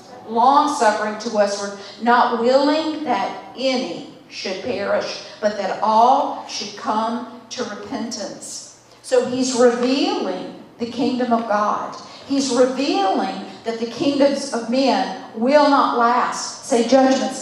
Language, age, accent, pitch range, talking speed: English, 50-69, American, 225-275 Hz, 125 wpm